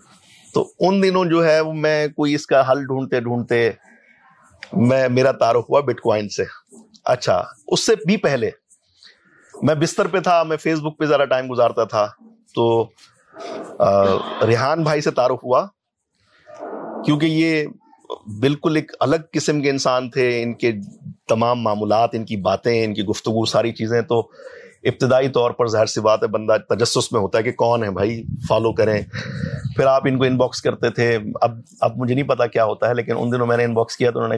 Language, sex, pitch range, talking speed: Urdu, male, 115-155 Hz, 185 wpm